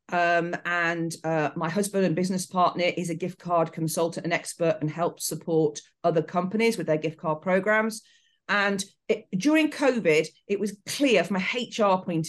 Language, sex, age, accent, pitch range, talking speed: English, female, 40-59, British, 155-190 Hz, 170 wpm